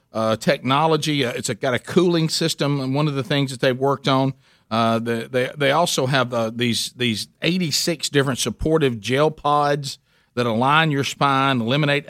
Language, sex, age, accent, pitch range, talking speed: English, male, 50-69, American, 130-170 Hz, 185 wpm